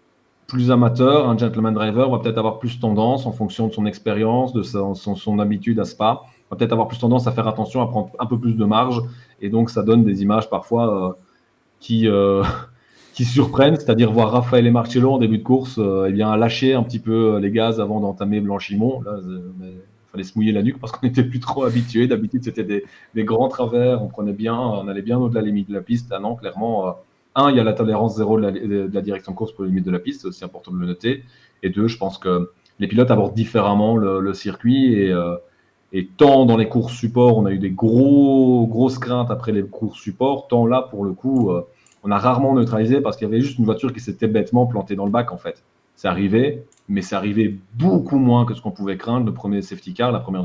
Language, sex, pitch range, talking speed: French, male, 100-125 Hz, 245 wpm